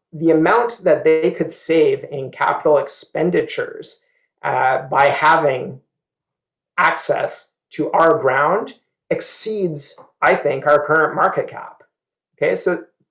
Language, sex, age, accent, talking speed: English, male, 40-59, American, 115 wpm